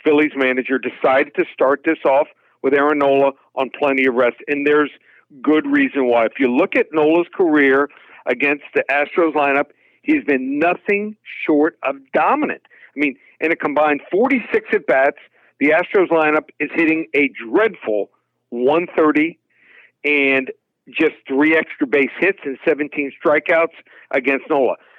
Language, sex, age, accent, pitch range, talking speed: English, male, 50-69, American, 140-175 Hz, 145 wpm